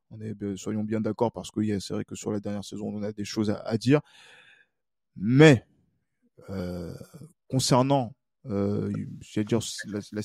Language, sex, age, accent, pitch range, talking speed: French, male, 20-39, French, 115-155 Hz, 145 wpm